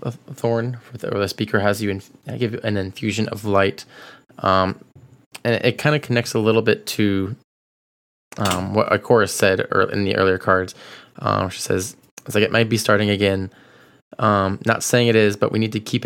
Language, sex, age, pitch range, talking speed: English, male, 20-39, 105-120 Hz, 200 wpm